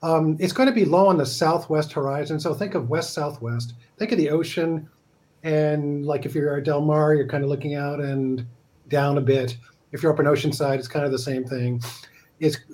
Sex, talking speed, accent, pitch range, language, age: male, 215 wpm, American, 130-155 Hz, English, 50-69